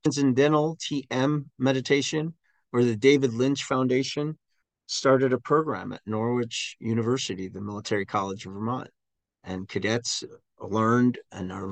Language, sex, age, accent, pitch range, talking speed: English, male, 40-59, American, 105-130 Hz, 125 wpm